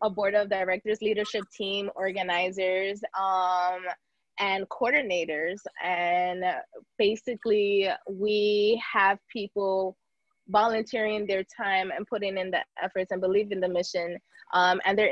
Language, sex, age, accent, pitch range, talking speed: English, female, 20-39, American, 185-210 Hz, 125 wpm